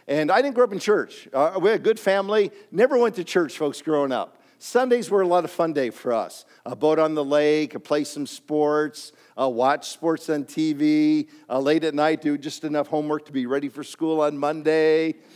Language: English